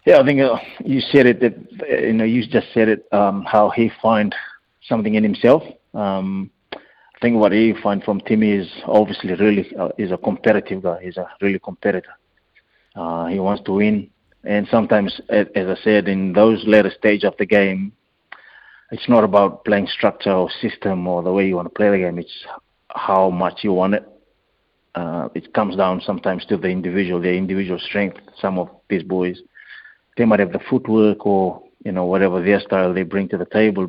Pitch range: 95-105 Hz